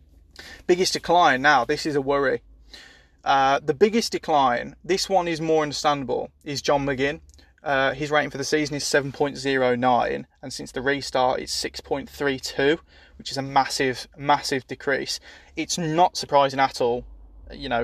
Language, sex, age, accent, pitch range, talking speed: English, male, 20-39, British, 125-145 Hz, 155 wpm